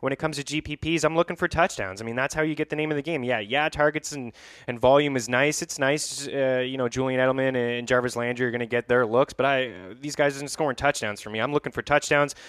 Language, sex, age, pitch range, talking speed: English, male, 20-39, 110-130 Hz, 275 wpm